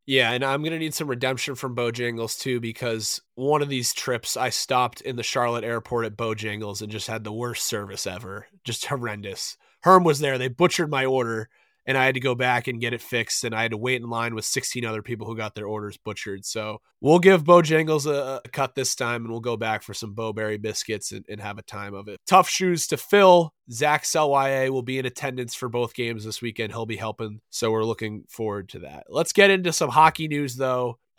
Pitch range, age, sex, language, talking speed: 115-135 Hz, 20-39, male, English, 235 wpm